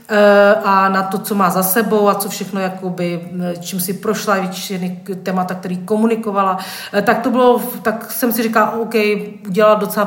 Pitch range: 175-200 Hz